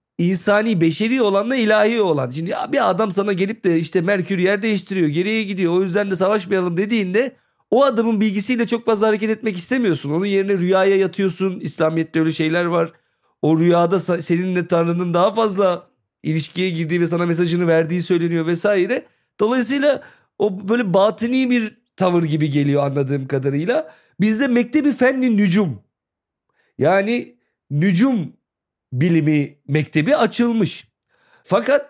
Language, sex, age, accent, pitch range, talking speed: Turkish, male, 40-59, native, 160-220 Hz, 135 wpm